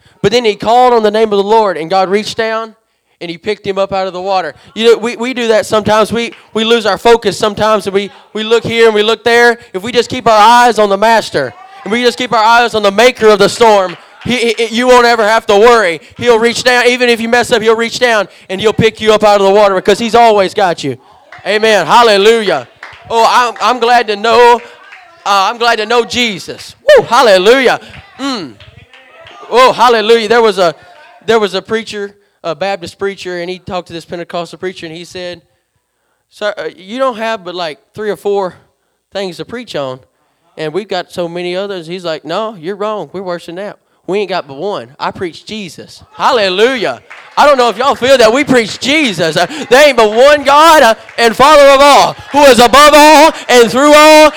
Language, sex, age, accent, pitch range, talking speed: English, male, 20-39, American, 200-255 Hz, 220 wpm